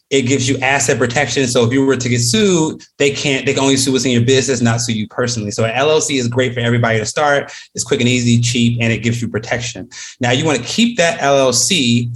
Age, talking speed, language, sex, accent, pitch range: 30-49, 255 wpm, English, male, American, 115-135 Hz